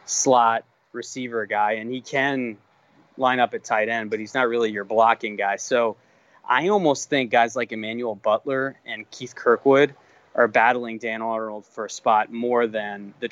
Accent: American